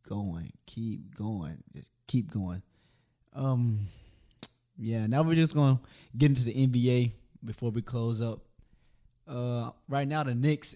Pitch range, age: 110-135 Hz, 20-39